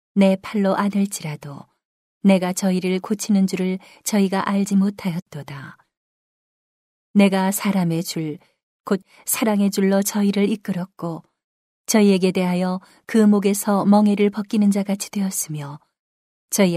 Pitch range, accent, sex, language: 170-200 Hz, native, female, Korean